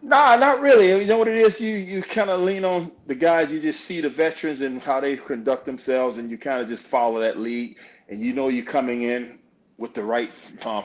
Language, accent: English, American